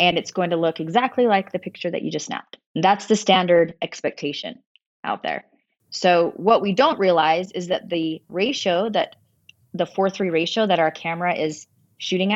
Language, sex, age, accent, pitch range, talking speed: English, female, 30-49, American, 165-200 Hz, 185 wpm